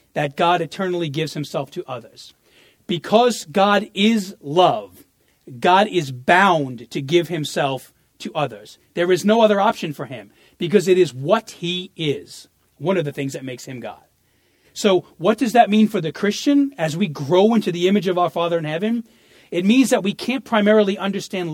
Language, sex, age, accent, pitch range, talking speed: English, male, 40-59, American, 155-210 Hz, 185 wpm